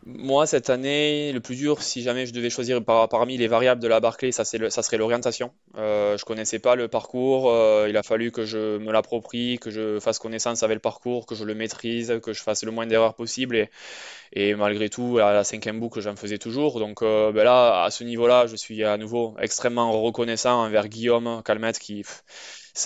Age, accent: 20-39, French